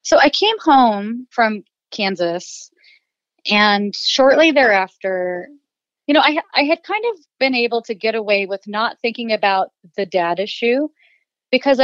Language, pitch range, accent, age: English, 185-245 Hz, American, 30-49